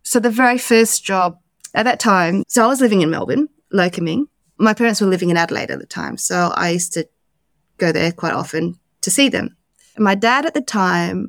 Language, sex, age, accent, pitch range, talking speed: English, female, 30-49, Australian, 175-225 Hz, 215 wpm